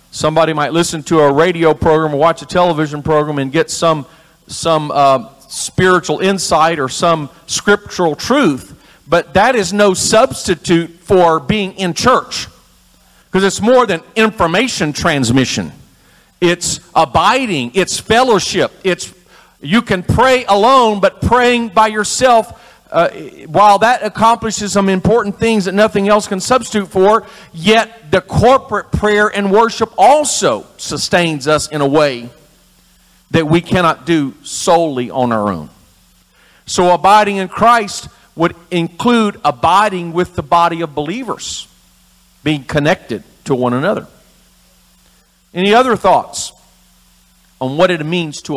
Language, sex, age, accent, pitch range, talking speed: English, male, 50-69, American, 150-205 Hz, 135 wpm